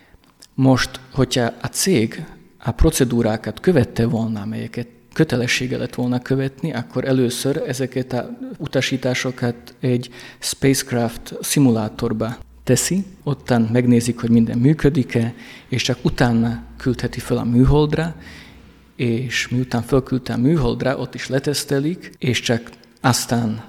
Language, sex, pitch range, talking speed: Hungarian, male, 120-135 Hz, 115 wpm